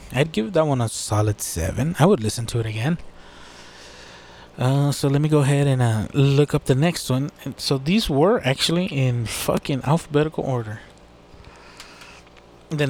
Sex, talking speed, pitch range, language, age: male, 165 wpm, 115-150 Hz, English, 20-39